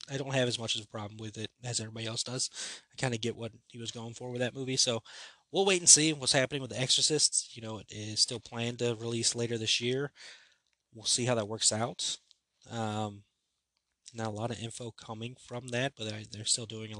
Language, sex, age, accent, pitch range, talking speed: English, male, 20-39, American, 110-135 Hz, 230 wpm